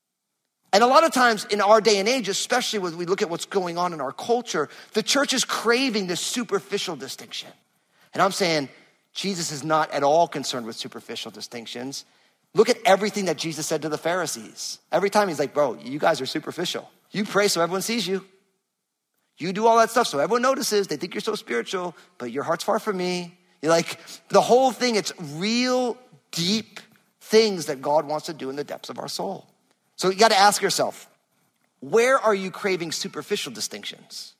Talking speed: 200 wpm